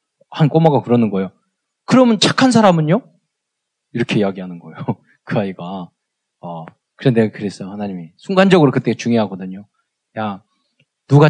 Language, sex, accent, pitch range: Korean, male, native, 120-195 Hz